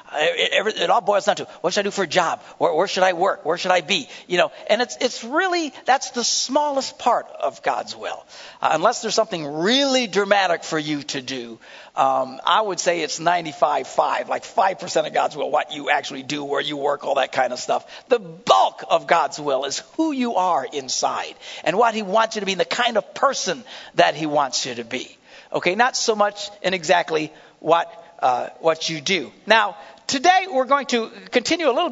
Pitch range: 160-240 Hz